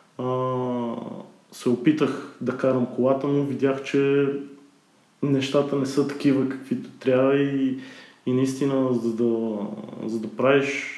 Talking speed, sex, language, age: 120 wpm, male, Bulgarian, 20-39